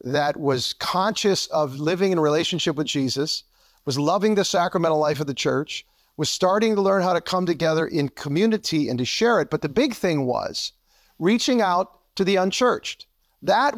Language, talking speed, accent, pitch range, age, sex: English, 185 wpm, American, 170-225 Hz, 50-69, male